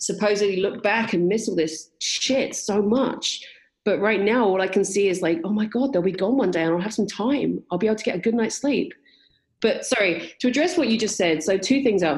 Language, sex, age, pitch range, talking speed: English, female, 30-49, 185-245 Hz, 260 wpm